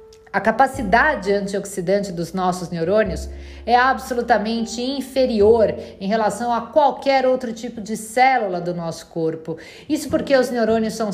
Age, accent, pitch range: 50-69, Brazilian, 200-245 Hz